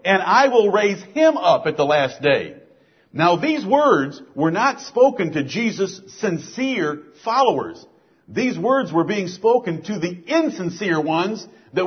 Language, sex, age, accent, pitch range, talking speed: English, male, 50-69, American, 165-225 Hz, 150 wpm